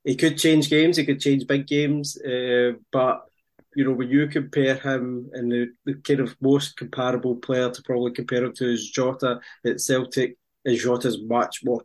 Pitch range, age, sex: 120-140 Hz, 20-39, male